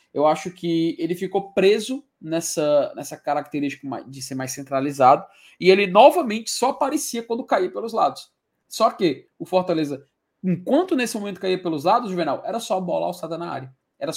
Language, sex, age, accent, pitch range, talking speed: Portuguese, male, 20-39, Brazilian, 170-240 Hz, 170 wpm